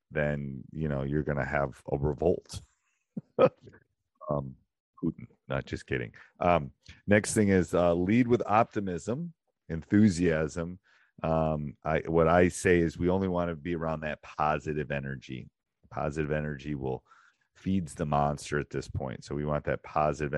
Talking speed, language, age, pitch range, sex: 155 wpm, English, 40-59, 70-85 Hz, male